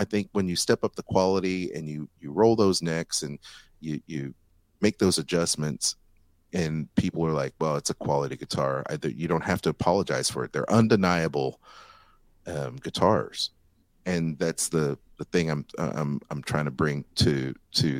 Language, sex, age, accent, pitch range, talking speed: English, male, 30-49, American, 75-90 Hz, 180 wpm